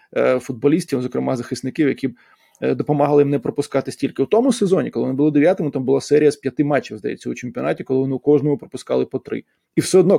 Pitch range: 140-190 Hz